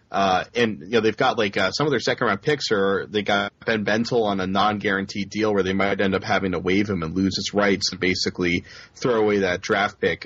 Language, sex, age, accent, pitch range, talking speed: English, male, 30-49, American, 95-115 Hz, 265 wpm